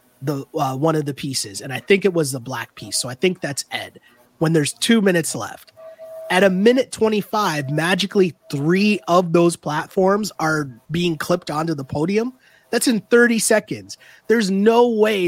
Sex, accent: male, American